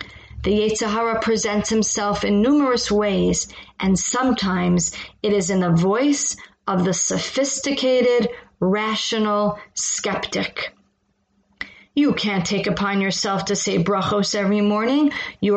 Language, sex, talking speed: English, female, 115 wpm